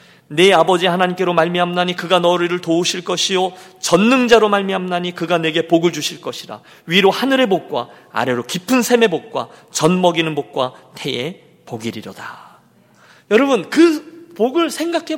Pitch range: 175-270 Hz